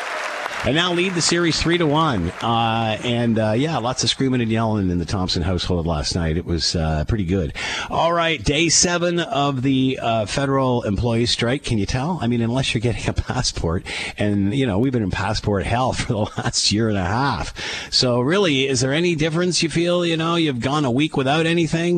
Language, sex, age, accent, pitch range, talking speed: English, male, 50-69, American, 105-145 Hz, 215 wpm